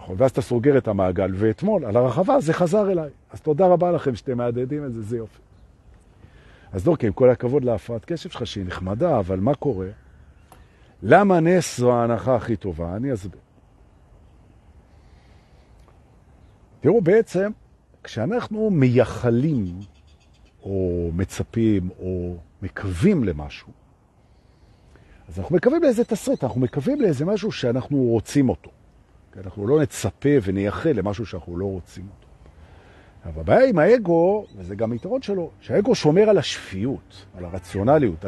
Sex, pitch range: male, 95-150 Hz